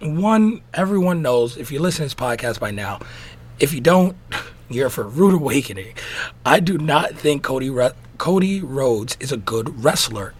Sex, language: male, English